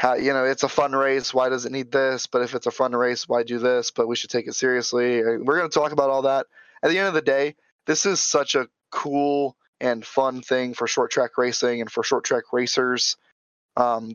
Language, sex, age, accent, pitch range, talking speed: English, male, 20-39, American, 125-145 Hz, 245 wpm